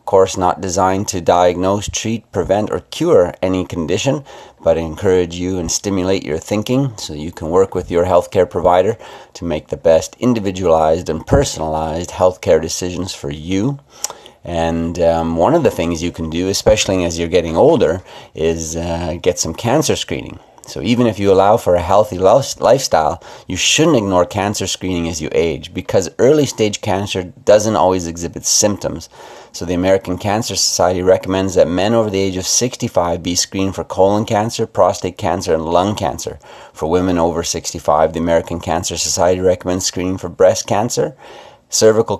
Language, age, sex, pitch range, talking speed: English, 30-49, male, 85-100 Hz, 170 wpm